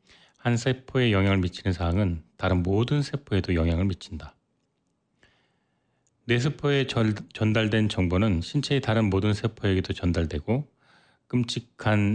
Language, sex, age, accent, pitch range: Korean, male, 30-49, native, 90-125 Hz